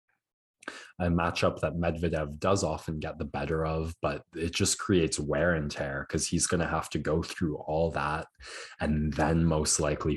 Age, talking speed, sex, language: 20-39, 175 wpm, male, English